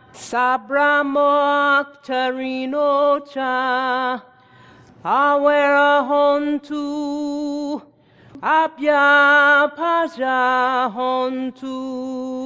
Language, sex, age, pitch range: English, female, 40-59, 255-290 Hz